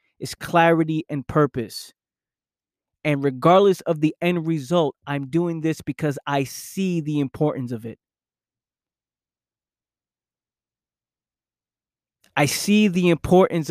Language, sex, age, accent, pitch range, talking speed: English, male, 20-39, American, 135-170 Hz, 105 wpm